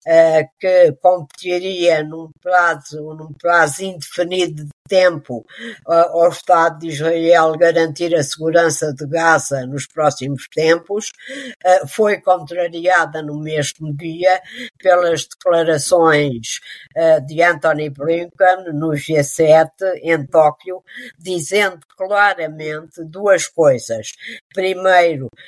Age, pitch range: 50-69, 155-185 Hz